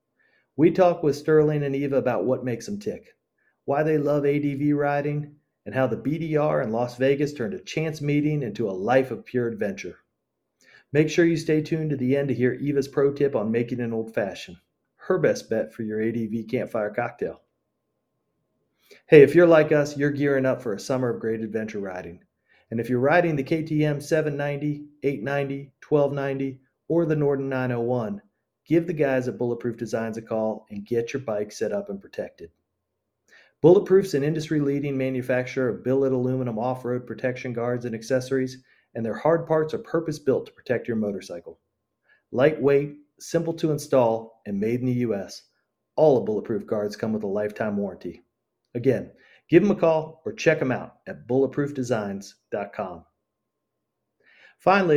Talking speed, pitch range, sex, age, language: 170 wpm, 115-150 Hz, male, 40-59, English